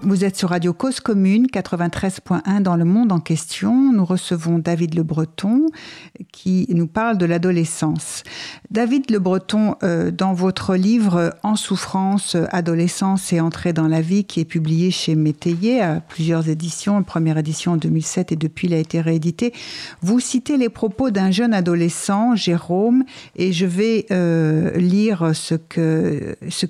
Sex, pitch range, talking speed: female, 165-200 Hz, 160 wpm